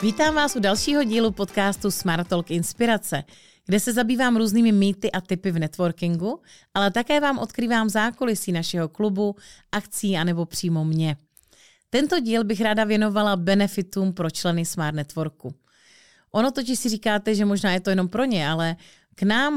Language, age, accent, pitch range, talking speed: Czech, 30-49, native, 170-215 Hz, 165 wpm